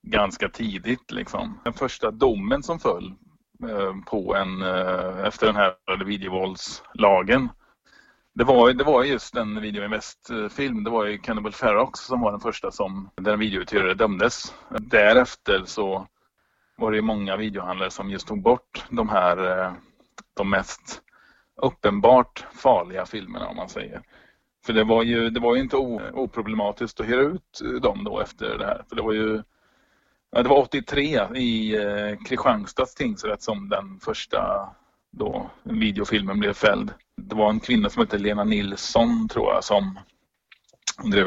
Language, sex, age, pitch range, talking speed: Swedish, male, 30-49, 100-125 Hz, 150 wpm